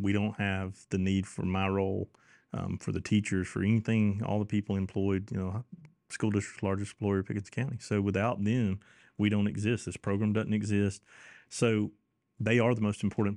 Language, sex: English, male